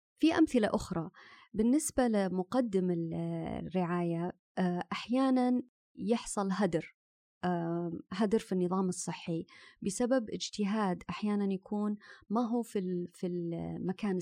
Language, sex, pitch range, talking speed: Arabic, female, 175-210 Hz, 85 wpm